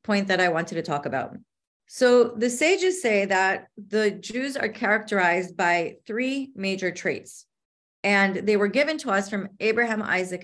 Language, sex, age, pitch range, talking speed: English, female, 30-49, 190-230 Hz, 165 wpm